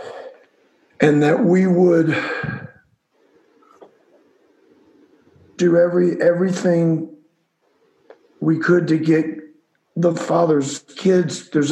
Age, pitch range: 50-69, 185-255 Hz